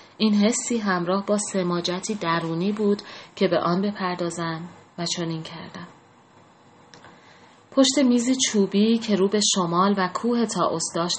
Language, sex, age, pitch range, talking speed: Persian, female, 30-49, 165-195 Hz, 135 wpm